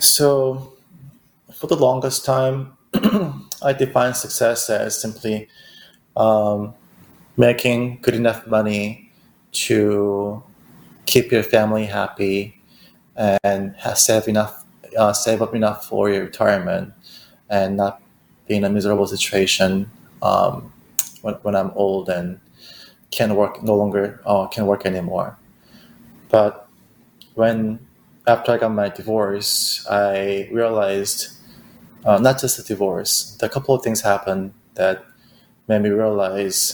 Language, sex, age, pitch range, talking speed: English, male, 20-39, 100-115 Hz, 120 wpm